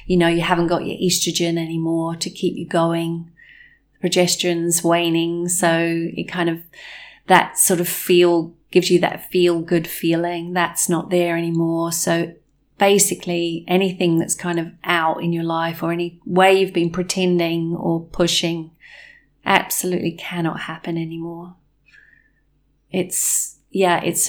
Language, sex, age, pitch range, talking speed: English, female, 30-49, 170-185 Hz, 140 wpm